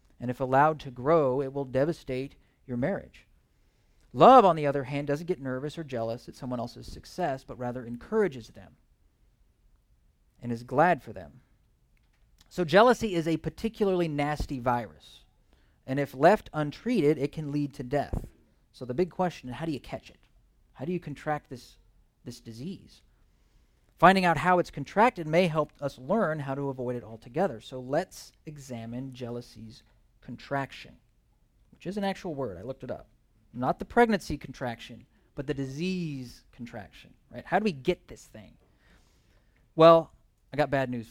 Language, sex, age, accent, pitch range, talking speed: English, male, 40-59, American, 125-180 Hz, 165 wpm